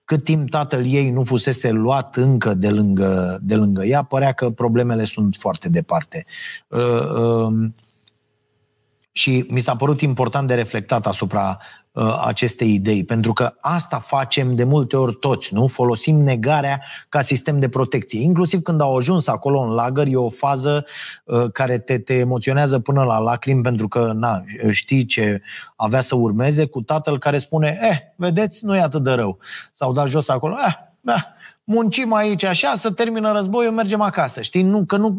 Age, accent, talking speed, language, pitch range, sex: 30-49, native, 165 wpm, Romanian, 115-155 Hz, male